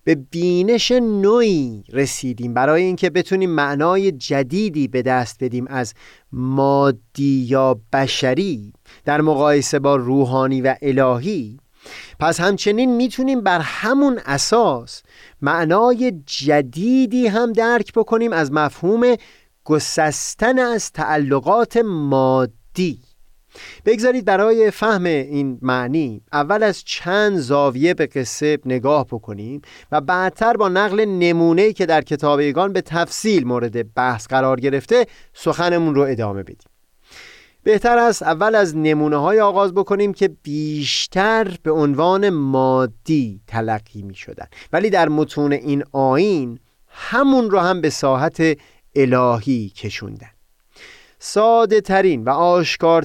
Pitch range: 130-185 Hz